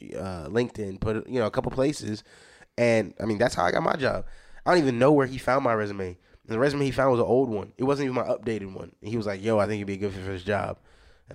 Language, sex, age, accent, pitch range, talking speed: English, male, 20-39, American, 100-130 Hz, 280 wpm